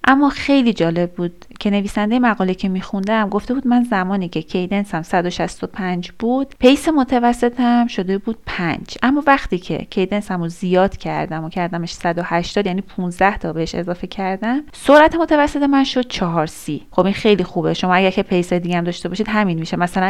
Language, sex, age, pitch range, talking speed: Persian, female, 30-49, 180-235 Hz, 170 wpm